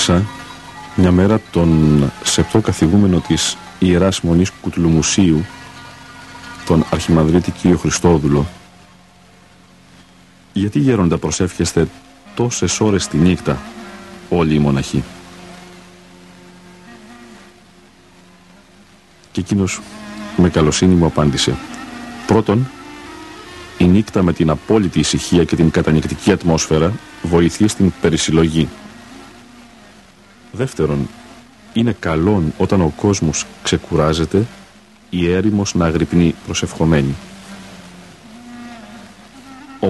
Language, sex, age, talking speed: Greek, male, 50-69, 85 wpm